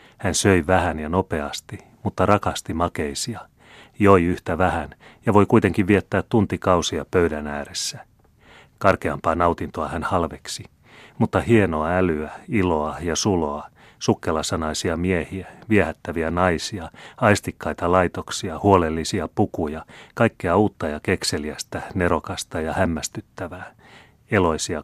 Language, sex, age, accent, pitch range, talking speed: Finnish, male, 30-49, native, 80-105 Hz, 105 wpm